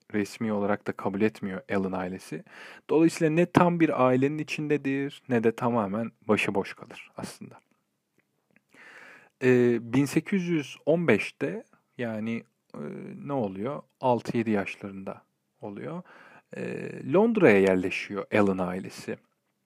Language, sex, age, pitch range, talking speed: Turkish, male, 40-59, 110-150 Hz, 100 wpm